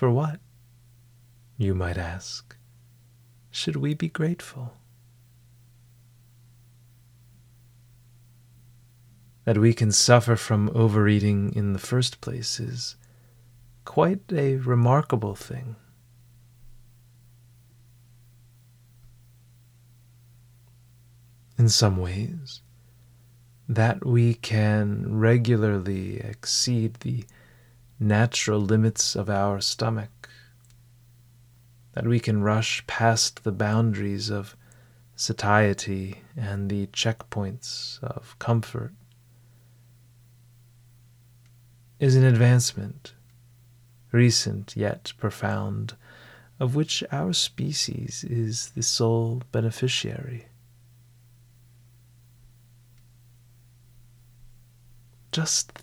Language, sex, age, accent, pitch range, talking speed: English, male, 30-49, American, 115-120 Hz, 70 wpm